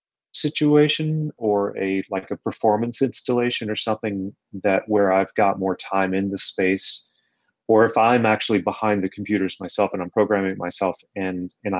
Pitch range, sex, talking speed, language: 95-115 Hz, male, 165 wpm, English